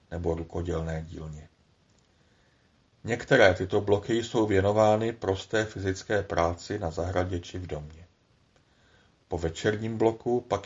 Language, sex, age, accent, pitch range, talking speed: Czech, male, 40-59, native, 90-110 Hz, 115 wpm